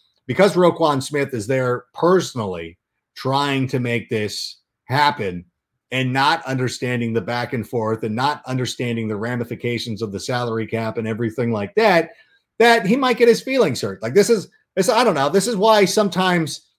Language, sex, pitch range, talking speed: English, male, 125-185 Hz, 170 wpm